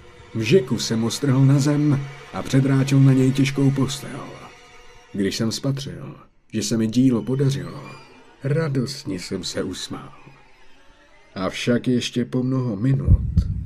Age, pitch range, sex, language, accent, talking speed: 50-69, 95-135 Hz, male, Czech, native, 125 wpm